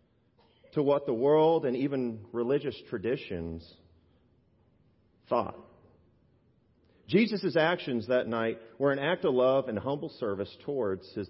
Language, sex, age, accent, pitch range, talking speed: English, male, 40-59, American, 120-180 Hz, 120 wpm